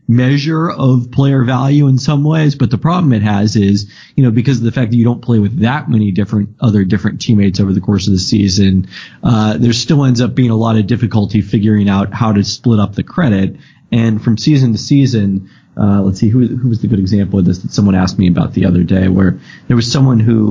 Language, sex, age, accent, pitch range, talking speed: English, male, 30-49, American, 100-125 Hz, 245 wpm